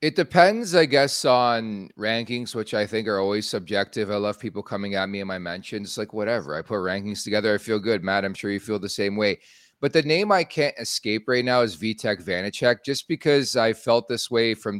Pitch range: 105-125 Hz